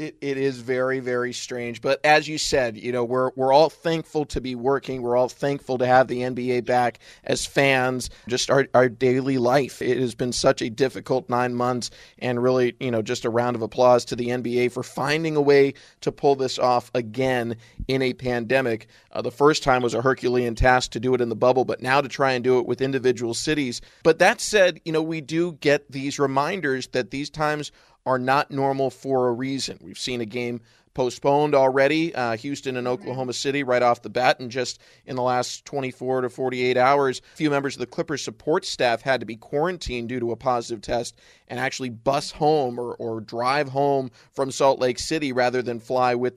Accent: American